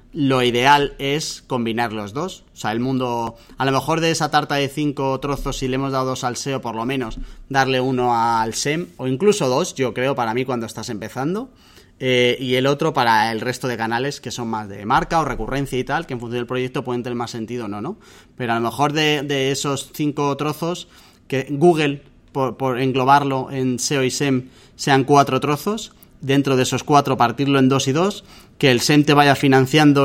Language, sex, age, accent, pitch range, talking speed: Spanish, male, 30-49, Spanish, 125-150 Hz, 220 wpm